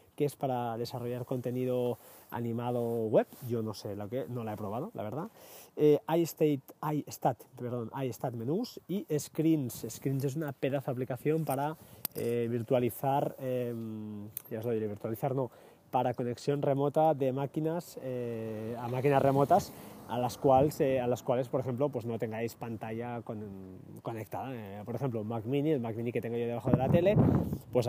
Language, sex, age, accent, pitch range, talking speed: Spanish, male, 20-39, Spanish, 120-145 Hz, 175 wpm